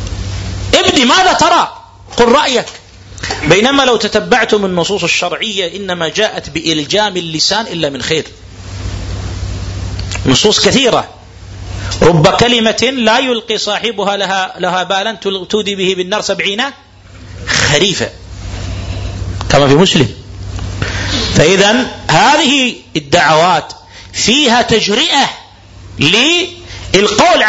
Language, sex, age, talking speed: Arabic, male, 40-59, 85 wpm